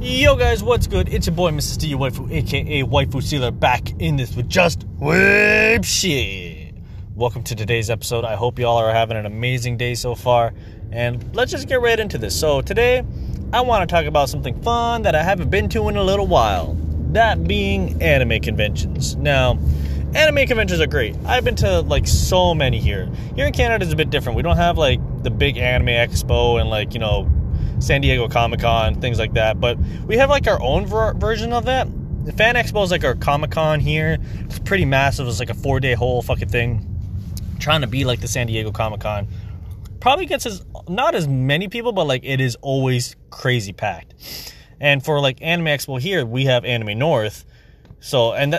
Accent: American